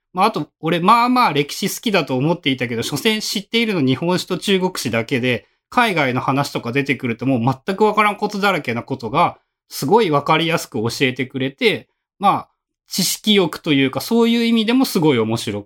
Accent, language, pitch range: native, Japanese, 140-225 Hz